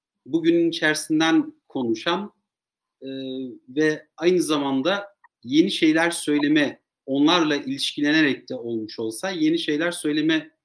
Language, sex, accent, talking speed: Turkish, male, native, 100 wpm